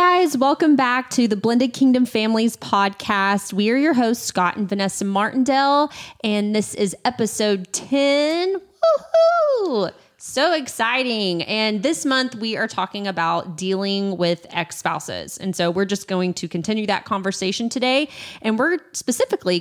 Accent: American